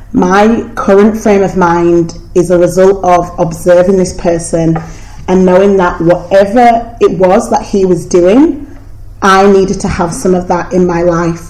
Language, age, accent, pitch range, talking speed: English, 30-49, British, 170-195 Hz, 165 wpm